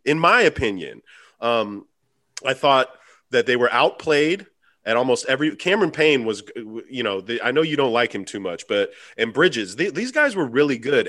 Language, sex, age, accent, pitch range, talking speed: English, male, 30-49, American, 115-160 Hz, 195 wpm